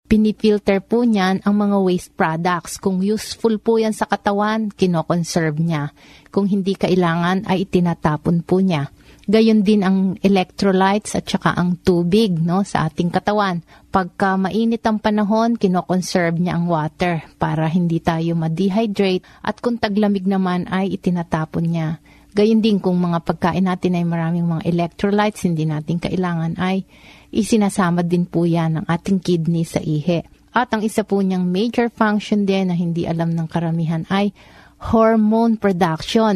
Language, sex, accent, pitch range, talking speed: Filipino, female, native, 170-210 Hz, 150 wpm